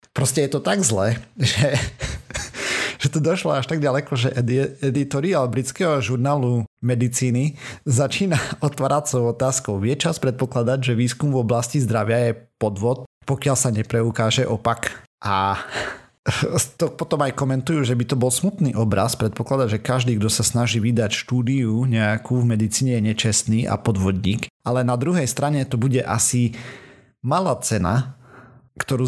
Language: Slovak